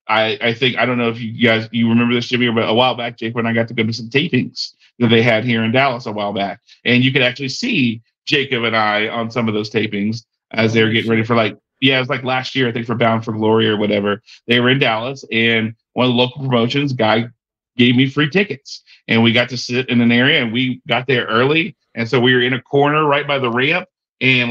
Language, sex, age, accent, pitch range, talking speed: English, male, 40-59, American, 115-140 Hz, 265 wpm